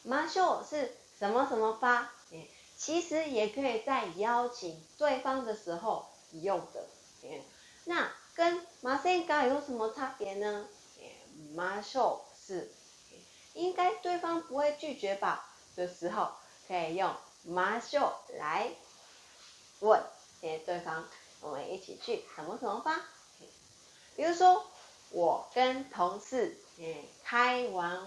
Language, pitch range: Chinese, 185-285 Hz